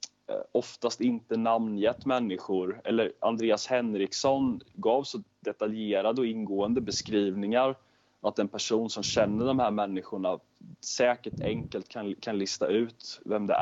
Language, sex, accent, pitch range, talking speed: Swedish, male, native, 105-125 Hz, 130 wpm